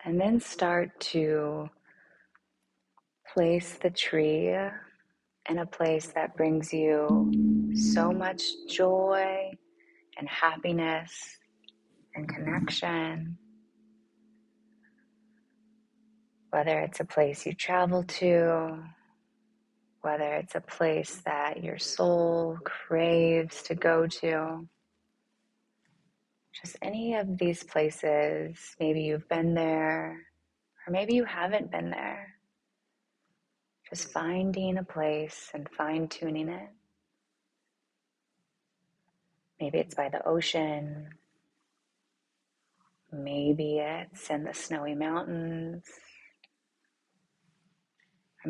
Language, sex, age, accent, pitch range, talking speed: English, female, 20-39, American, 155-210 Hz, 90 wpm